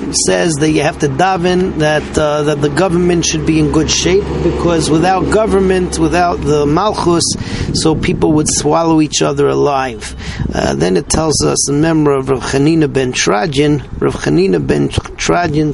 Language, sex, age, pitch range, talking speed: English, male, 40-59, 130-170 Hz, 170 wpm